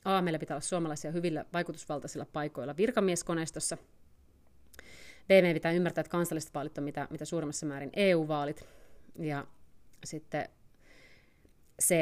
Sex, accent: female, native